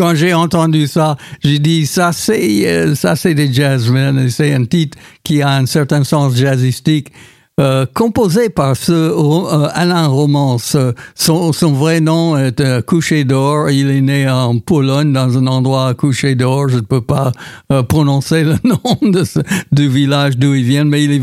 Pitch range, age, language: 130-160 Hz, 60-79, French